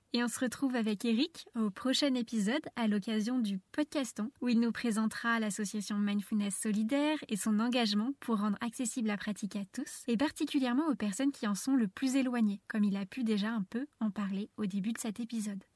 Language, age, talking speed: French, 20-39, 205 wpm